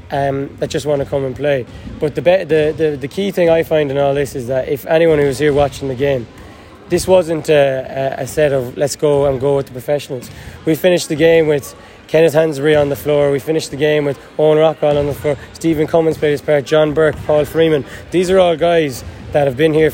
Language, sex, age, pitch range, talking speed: English, male, 20-39, 135-155 Hz, 245 wpm